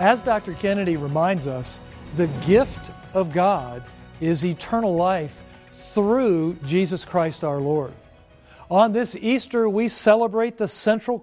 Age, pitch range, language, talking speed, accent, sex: 50-69, 155-215 Hz, English, 130 wpm, American, male